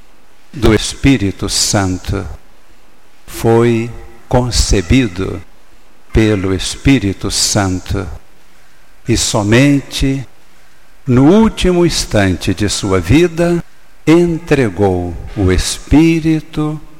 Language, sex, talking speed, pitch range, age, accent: Portuguese, male, 65 wpm, 95-125 Hz, 60-79, Brazilian